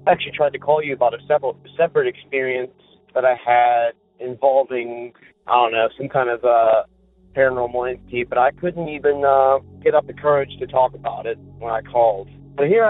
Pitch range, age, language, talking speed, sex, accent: 125-150 Hz, 30-49, English, 190 wpm, male, American